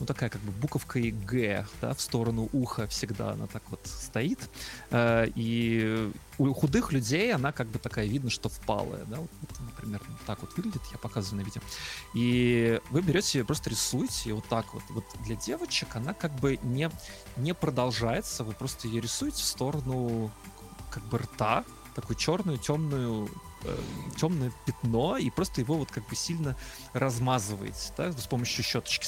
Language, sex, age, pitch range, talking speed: Russian, male, 20-39, 110-130 Hz, 170 wpm